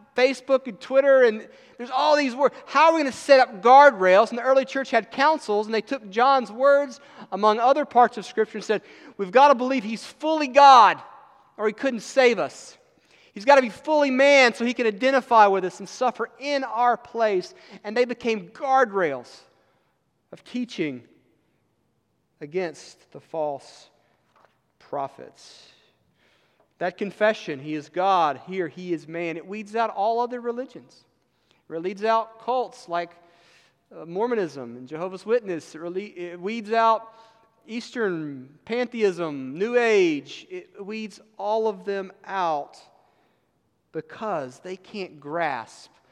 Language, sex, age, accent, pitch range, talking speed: English, male, 40-59, American, 165-250 Hz, 150 wpm